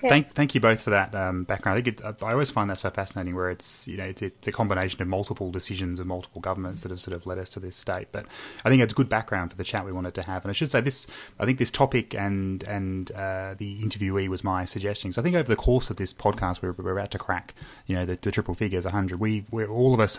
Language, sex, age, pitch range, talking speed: English, male, 20-39, 90-110 Hz, 290 wpm